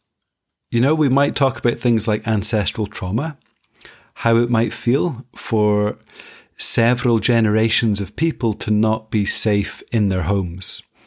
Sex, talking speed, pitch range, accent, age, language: male, 140 wpm, 105-120 Hz, British, 30-49, English